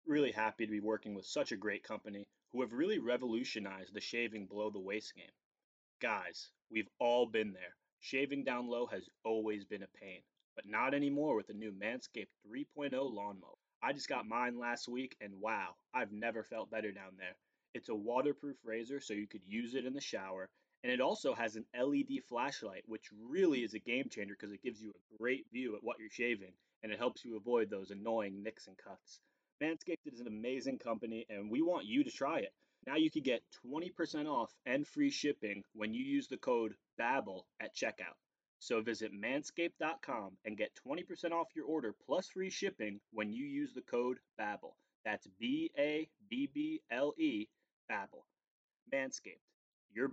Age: 20-39